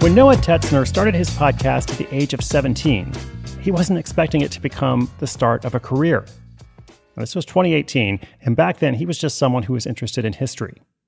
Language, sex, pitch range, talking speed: English, male, 115-145 Hz, 200 wpm